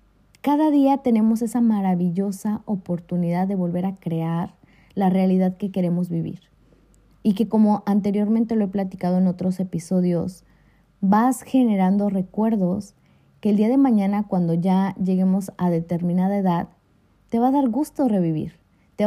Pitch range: 185-220 Hz